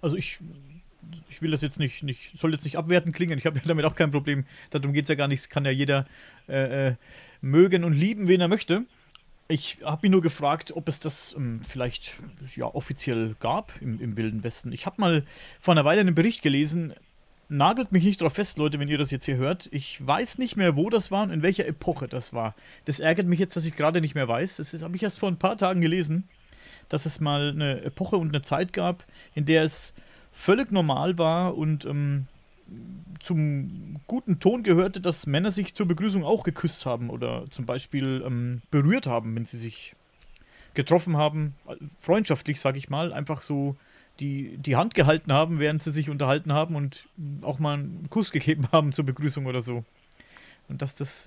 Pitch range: 140-175 Hz